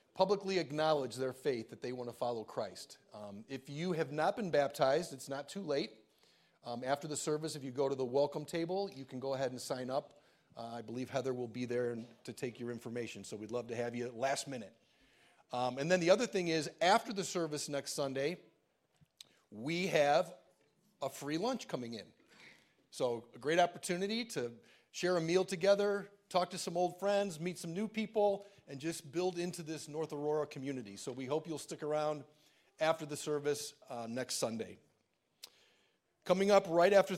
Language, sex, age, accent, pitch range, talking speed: English, male, 40-59, American, 130-170 Hz, 190 wpm